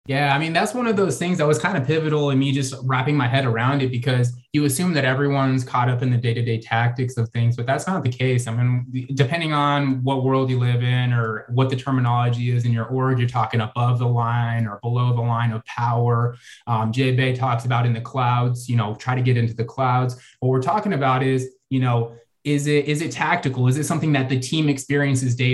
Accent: American